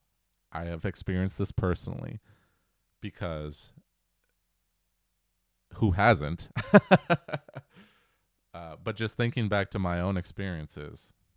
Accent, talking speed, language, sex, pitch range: American, 90 wpm, English, male, 85-105 Hz